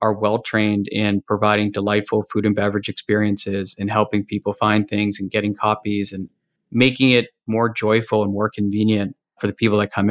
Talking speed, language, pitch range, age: 180 wpm, English, 105-115 Hz, 20-39